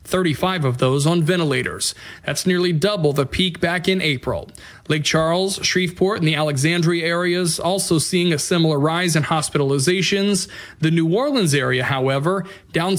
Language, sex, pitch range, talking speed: English, male, 150-185 Hz, 155 wpm